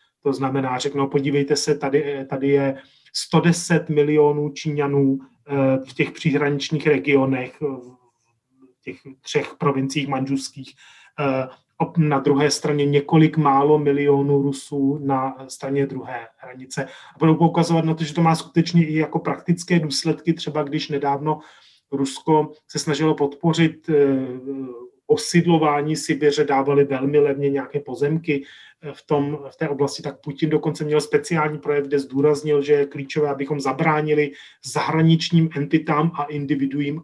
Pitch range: 140-155 Hz